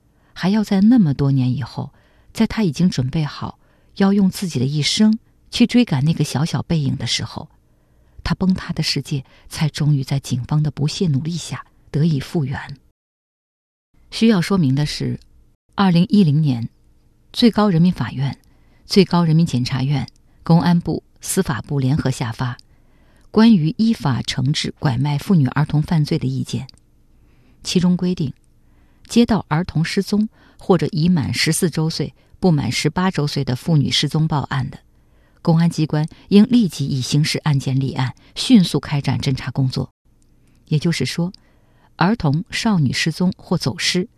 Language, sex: Chinese, female